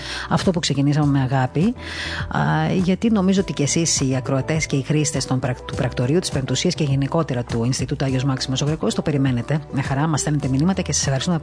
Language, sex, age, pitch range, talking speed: Greek, female, 30-49, 135-160 Hz, 195 wpm